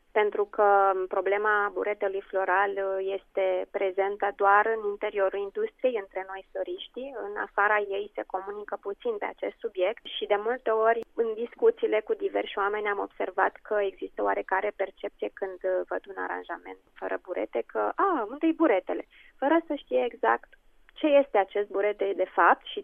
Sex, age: female, 20-39